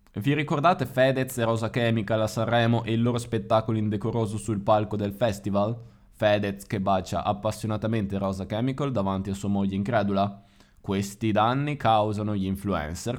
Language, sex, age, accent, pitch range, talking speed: Italian, male, 20-39, native, 95-115 Hz, 150 wpm